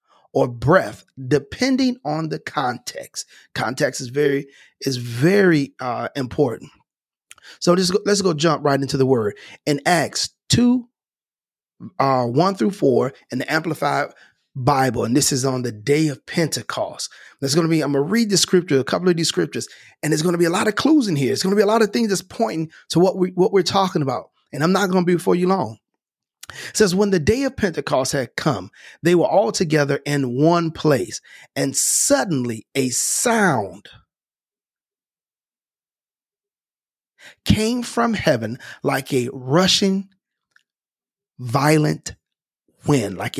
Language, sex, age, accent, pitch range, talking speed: English, male, 30-49, American, 135-195 Hz, 170 wpm